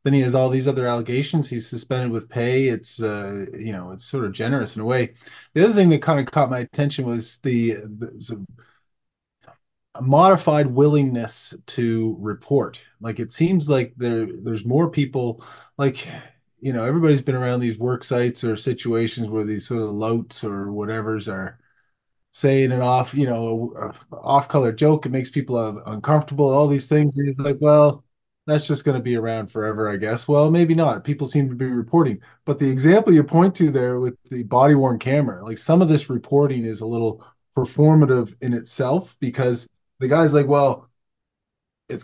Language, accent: English, American